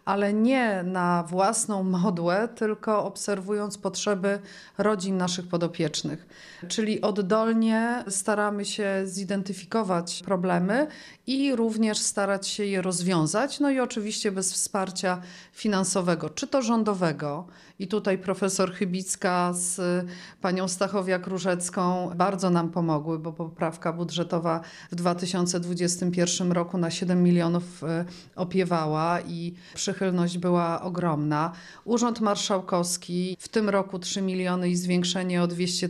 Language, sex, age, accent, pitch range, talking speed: Polish, female, 40-59, native, 175-205 Hz, 115 wpm